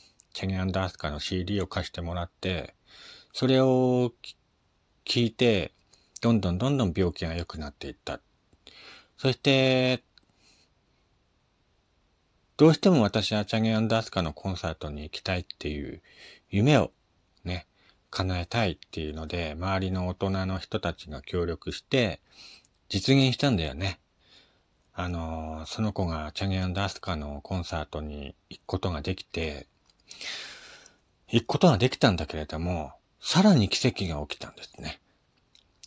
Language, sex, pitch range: Japanese, male, 85-130 Hz